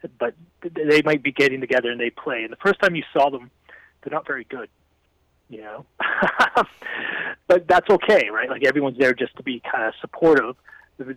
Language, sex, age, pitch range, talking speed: English, male, 30-49, 125-150 Hz, 190 wpm